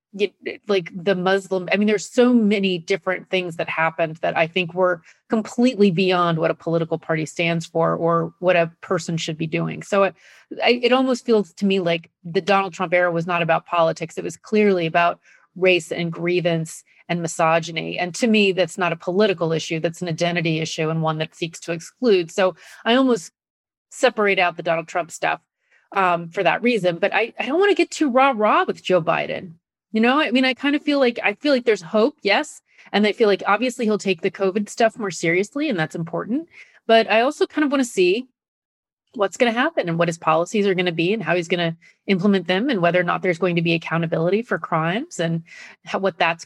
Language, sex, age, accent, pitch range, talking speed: English, female, 30-49, American, 170-225 Hz, 225 wpm